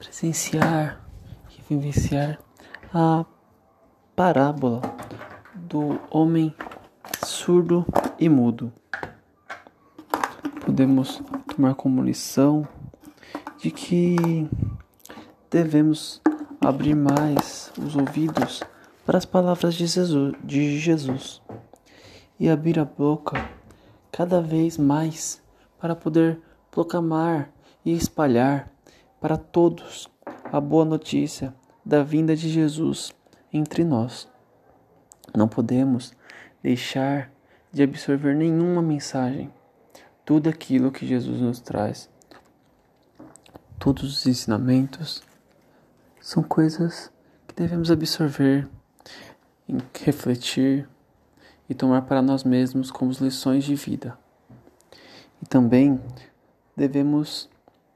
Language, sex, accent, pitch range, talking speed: Portuguese, male, Brazilian, 130-160 Hz, 85 wpm